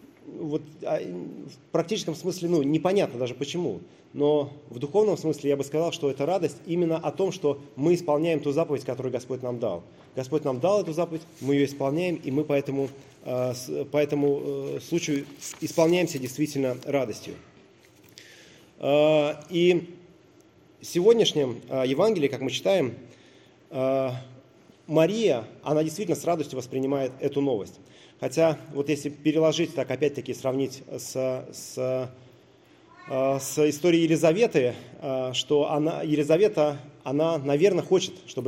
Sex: male